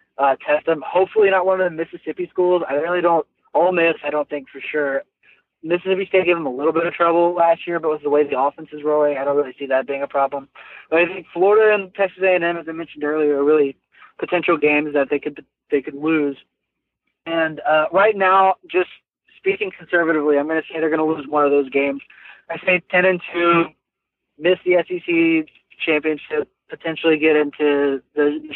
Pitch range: 145-175 Hz